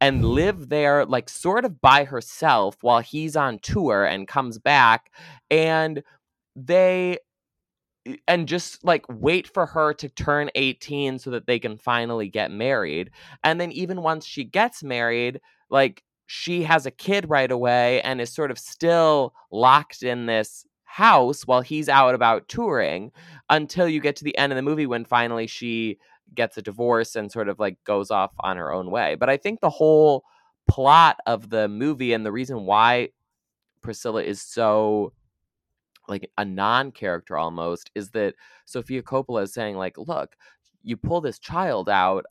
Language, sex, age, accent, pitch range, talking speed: English, male, 20-39, American, 115-155 Hz, 170 wpm